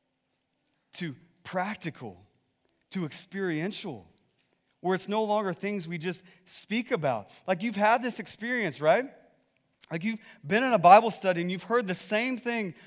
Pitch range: 155-205 Hz